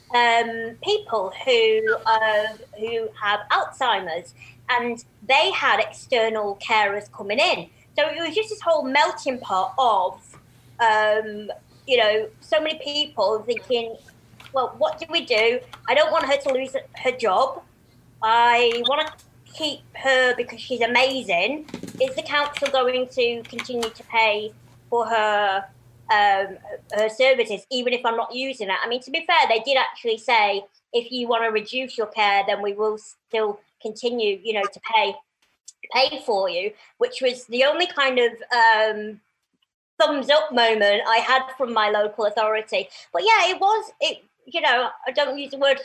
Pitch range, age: 220-295 Hz, 30-49